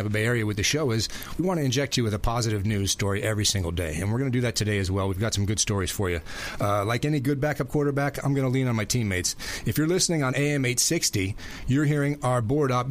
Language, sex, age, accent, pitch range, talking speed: English, male, 30-49, American, 105-130 Hz, 275 wpm